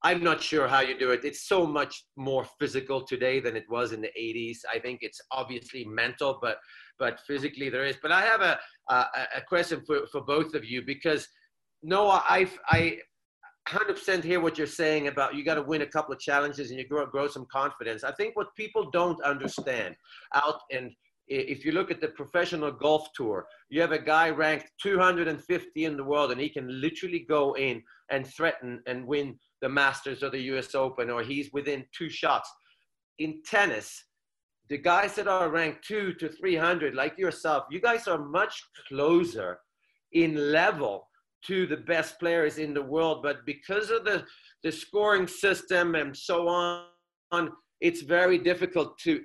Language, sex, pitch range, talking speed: English, male, 140-180 Hz, 185 wpm